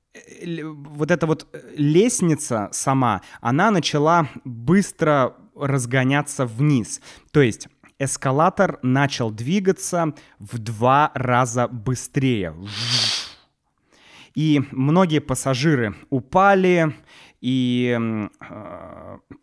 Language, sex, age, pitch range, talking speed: Russian, male, 20-39, 115-155 Hz, 75 wpm